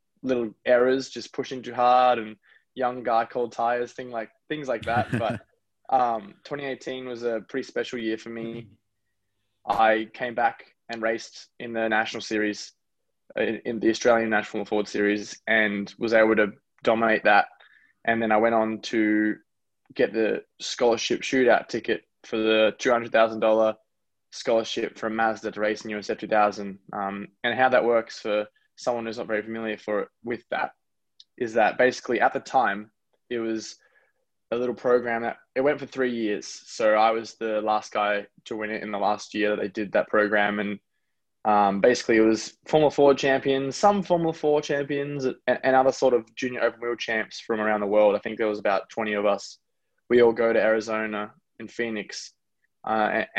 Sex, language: male, English